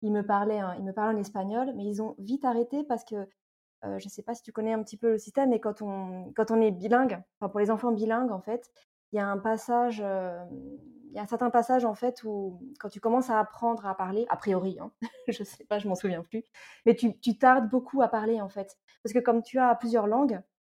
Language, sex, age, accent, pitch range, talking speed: French, female, 20-39, French, 200-240 Hz, 265 wpm